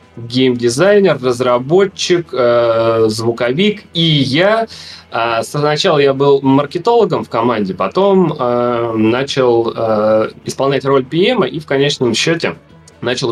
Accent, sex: native, male